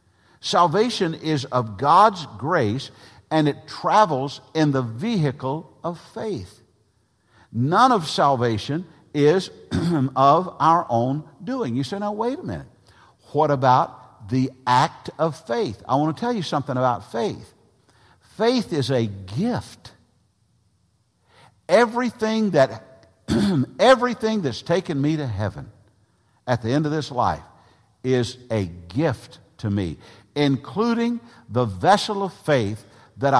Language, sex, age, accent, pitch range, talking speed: English, male, 50-69, American, 110-160 Hz, 125 wpm